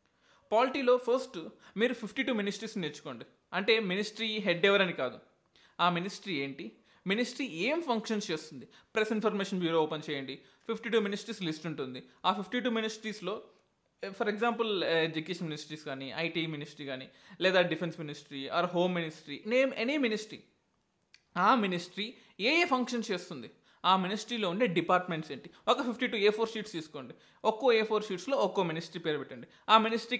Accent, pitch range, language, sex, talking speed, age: native, 175-235 Hz, Telugu, male, 155 wpm, 20-39